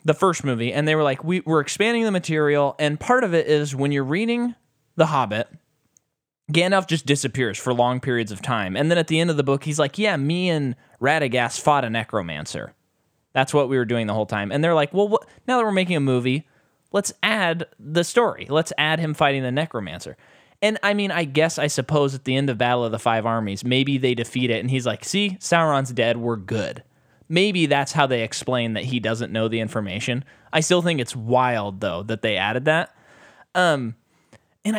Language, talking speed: English, 215 wpm